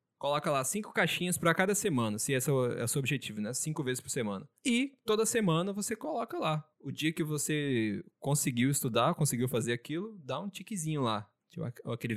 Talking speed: 190 wpm